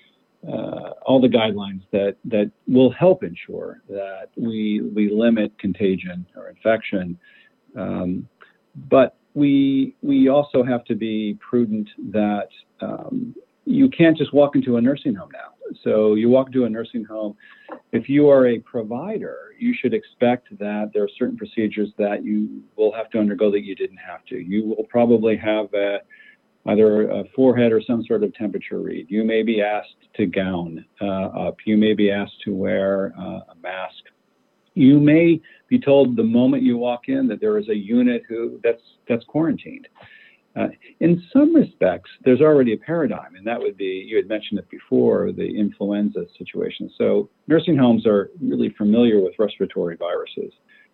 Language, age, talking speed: English, 40-59, 170 wpm